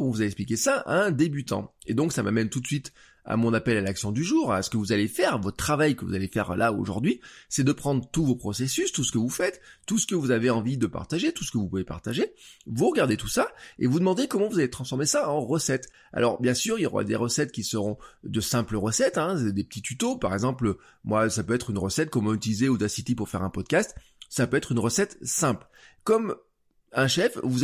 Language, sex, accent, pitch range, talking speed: French, male, French, 110-155 Hz, 255 wpm